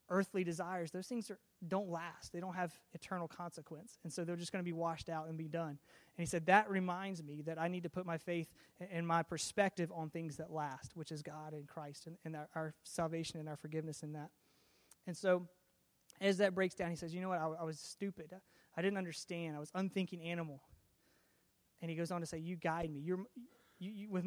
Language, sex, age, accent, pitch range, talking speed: English, male, 30-49, American, 160-185 Hz, 230 wpm